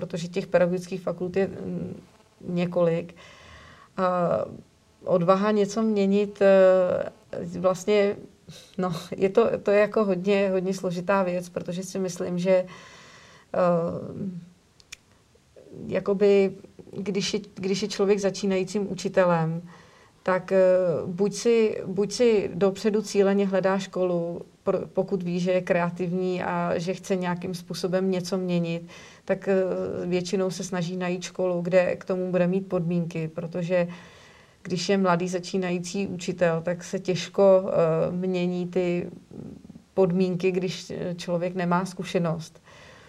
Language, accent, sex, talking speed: Czech, native, female, 115 wpm